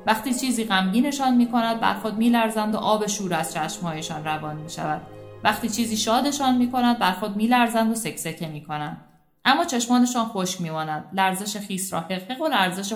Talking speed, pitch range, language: 180 wpm, 180-230 Hz, Persian